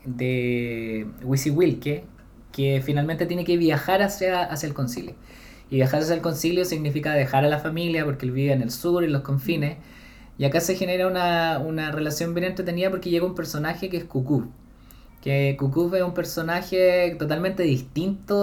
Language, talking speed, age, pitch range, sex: Spanish, 180 wpm, 20-39, 135-170 Hz, male